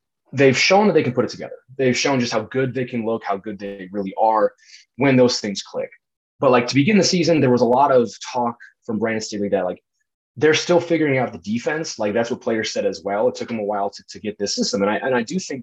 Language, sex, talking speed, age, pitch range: English, male, 275 wpm, 20-39, 105-140 Hz